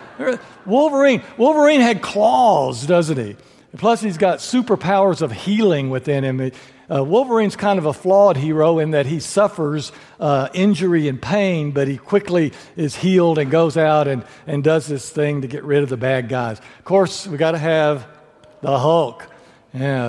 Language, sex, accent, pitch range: English, male, American, 145-200 Hz